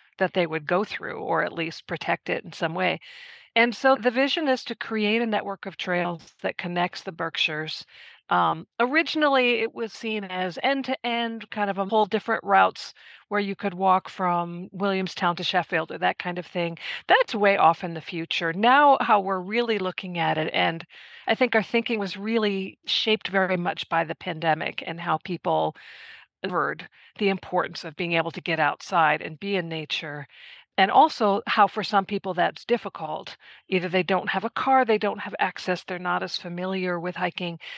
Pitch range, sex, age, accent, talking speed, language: 175-230 Hz, female, 50-69, American, 190 wpm, English